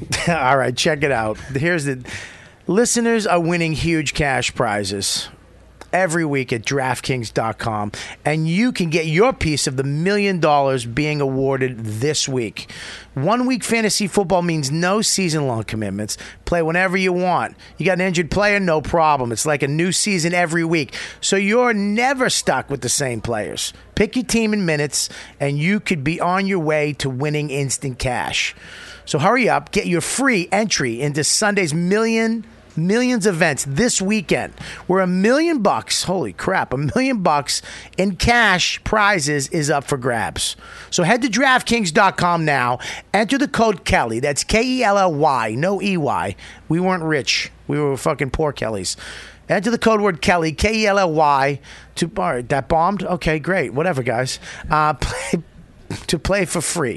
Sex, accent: male, American